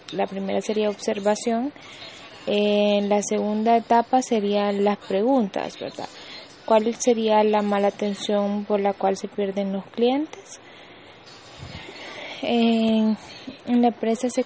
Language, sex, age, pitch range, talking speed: English, female, 20-39, 205-235 Hz, 125 wpm